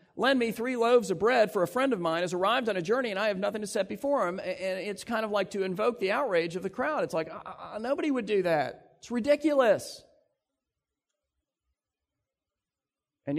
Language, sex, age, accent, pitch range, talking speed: English, male, 40-59, American, 155-245 Hz, 210 wpm